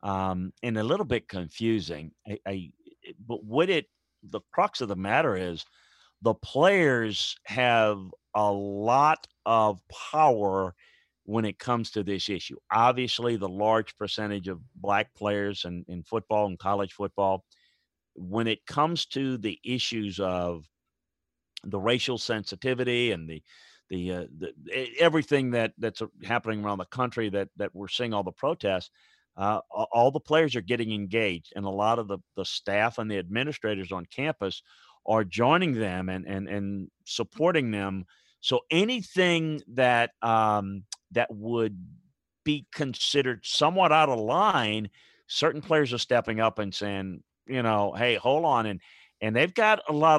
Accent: American